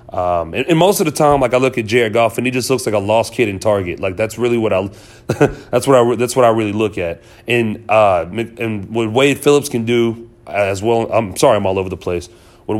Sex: male